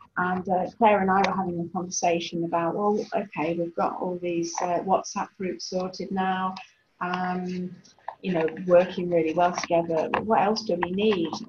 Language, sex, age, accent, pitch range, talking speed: English, female, 40-59, British, 170-200 Hz, 170 wpm